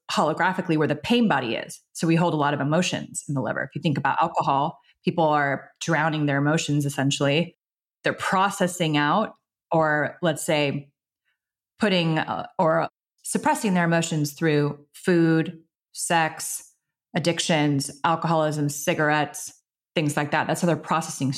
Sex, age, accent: female, 30-49, American